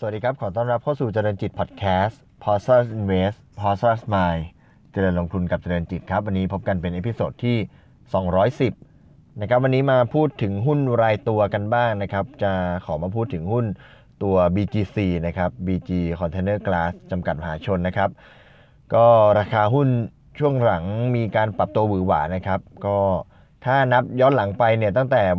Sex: male